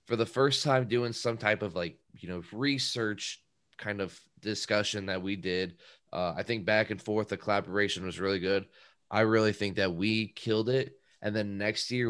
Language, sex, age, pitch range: English, male, 20-39, 100-120 Hz